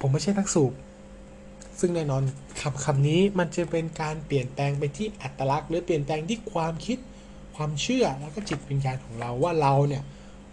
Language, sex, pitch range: Thai, male, 120-175 Hz